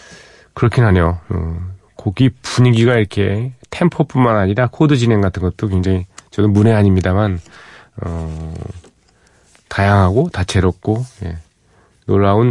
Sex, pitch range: male, 90-120 Hz